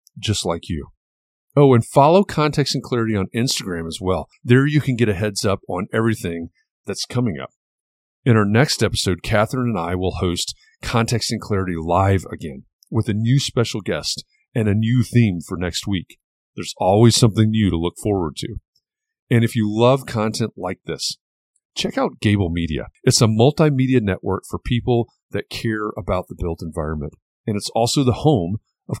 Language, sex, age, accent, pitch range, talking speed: English, male, 40-59, American, 95-125 Hz, 180 wpm